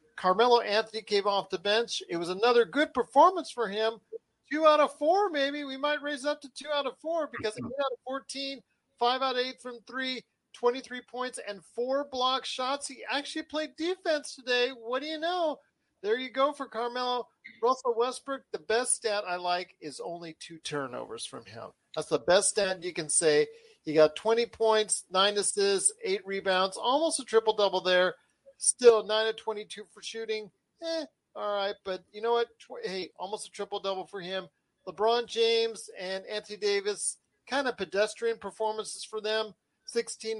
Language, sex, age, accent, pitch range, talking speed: English, male, 40-59, American, 195-270 Hz, 180 wpm